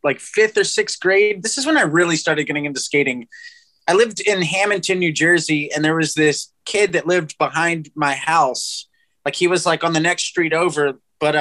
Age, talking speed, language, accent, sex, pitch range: 20-39, 210 wpm, English, American, male, 145-180 Hz